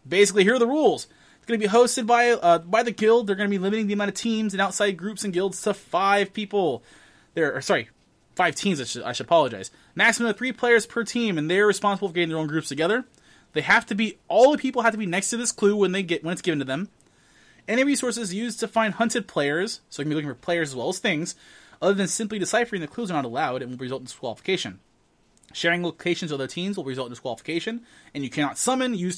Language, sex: English, male